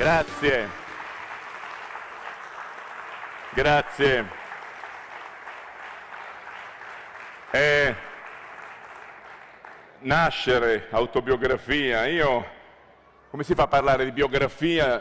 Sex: male